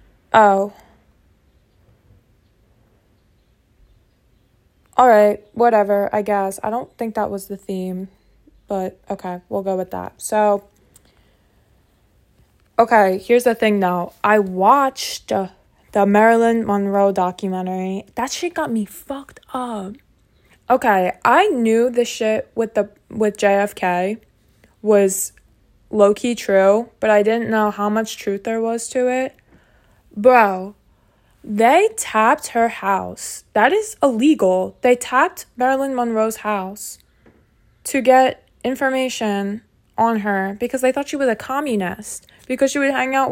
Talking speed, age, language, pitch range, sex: 125 wpm, 20-39, English, 200-255 Hz, female